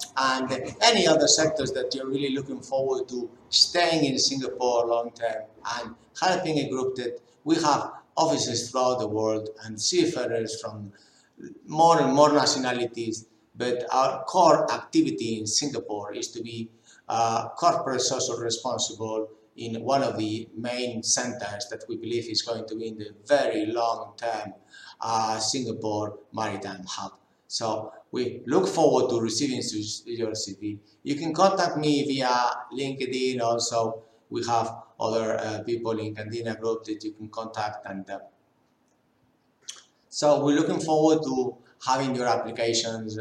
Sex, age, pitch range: male, 50-69, 110-140 Hz